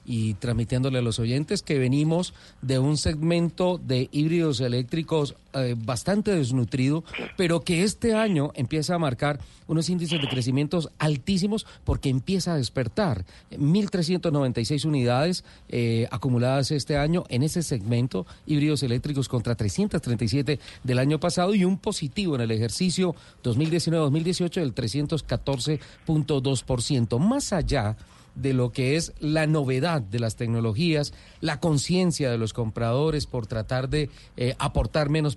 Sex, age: male, 40-59